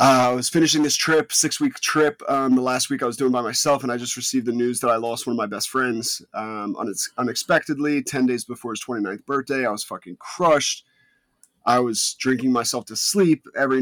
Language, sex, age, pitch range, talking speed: English, male, 30-49, 120-140 Hz, 215 wpm